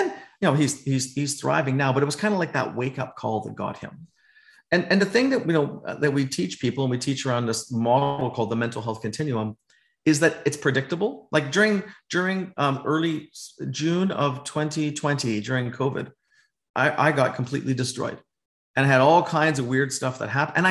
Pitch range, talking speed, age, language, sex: 130-170 Hz, 205 wpm, 40-59, English, male